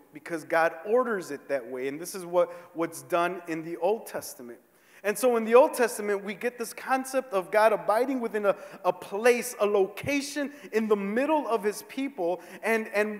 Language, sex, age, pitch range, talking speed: English, male, 30-49, 180-245 Hz, 195 wpm